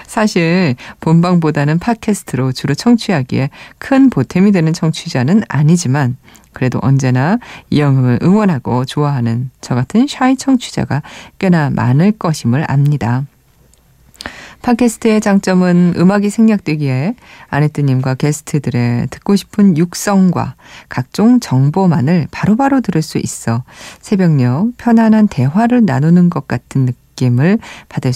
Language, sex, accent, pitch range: Korean, female, native, 135-210 Hz